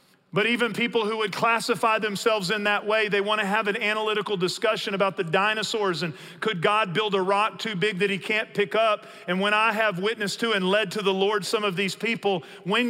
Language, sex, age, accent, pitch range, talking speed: English, male, 40-59, American, 160-215 Hz, 230 wpm